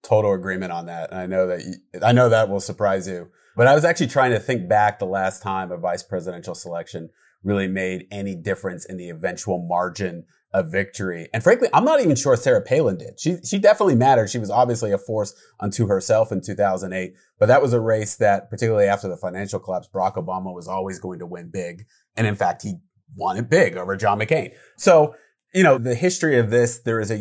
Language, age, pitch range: English, 30-49, 95-150 Hz